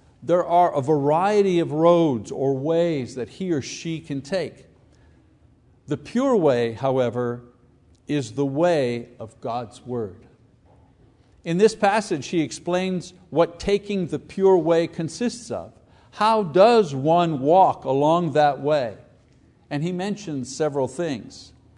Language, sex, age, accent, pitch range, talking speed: English, male, 60-79, American, 130-180 Hz, 130 wpm